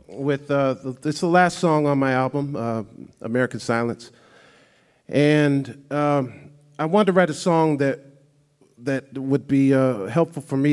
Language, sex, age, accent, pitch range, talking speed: English, male, 50-69, American, 115-150 Hz, 160 wpm